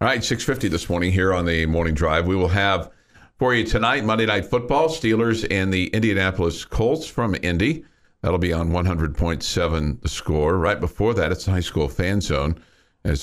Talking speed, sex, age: 190 wpm, male, 50-69